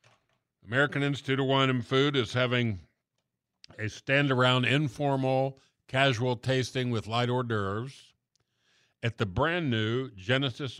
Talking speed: 115 wpm